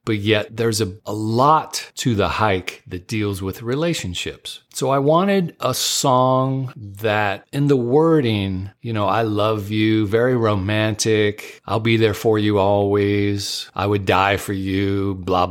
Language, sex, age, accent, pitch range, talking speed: English, male, 40-59, American, 95-130 Hz, 160 wpm